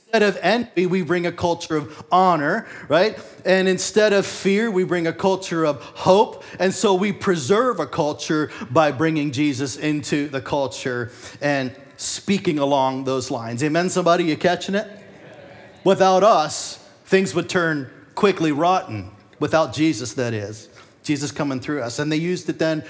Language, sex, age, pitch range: English, male, 40-59, 135-185 Hz